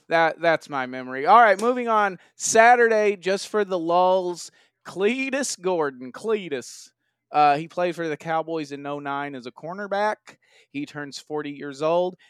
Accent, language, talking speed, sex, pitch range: American, English, 155 wpm, male, 145-185 Hz